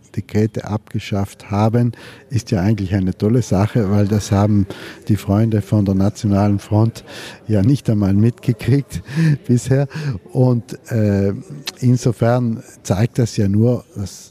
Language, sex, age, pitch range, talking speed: German, male, 50-69, 105-120 Hz, 130 wpm